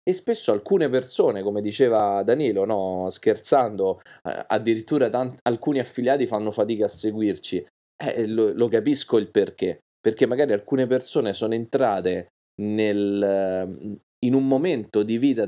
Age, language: 30-49, Italian